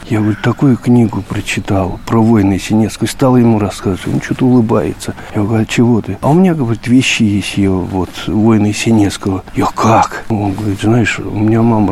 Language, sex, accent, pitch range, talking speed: Russian, male, native, 105-130 Hz, 185 wpm